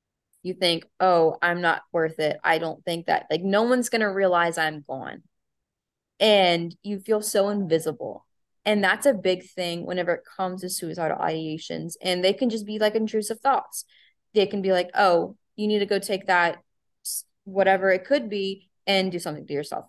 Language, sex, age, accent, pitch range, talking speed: English, female, 20-39, American, 165-195 Hz, 190 wpm